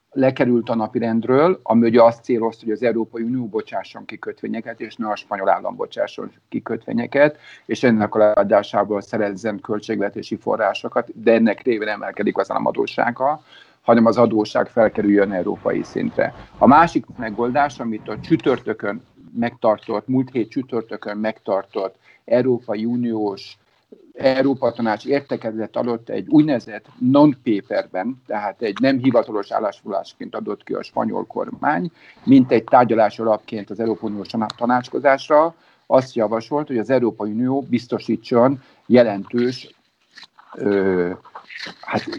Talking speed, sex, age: 125 wpm, male, 50-69